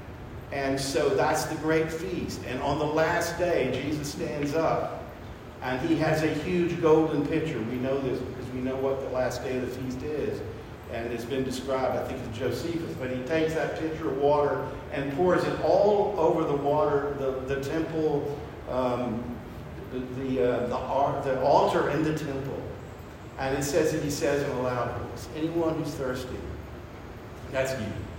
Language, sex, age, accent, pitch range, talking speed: English, male, 50-69, American, 120-155 Hz, 185 wpm